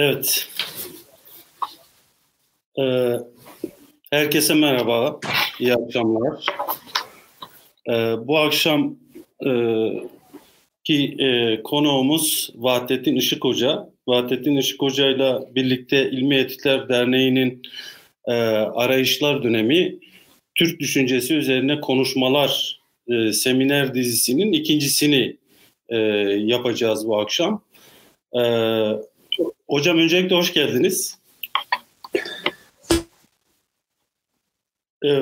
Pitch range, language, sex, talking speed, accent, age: 120-160 Hz, Turkish, male, 60 wpm, native, 50-69